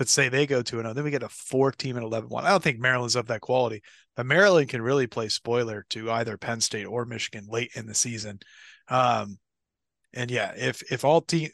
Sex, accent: male, American